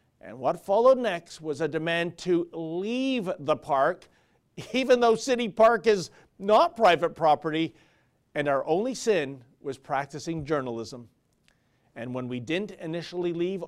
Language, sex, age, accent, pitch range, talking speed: English, male, 40-59, American, 150-205 Hz, 140 wpm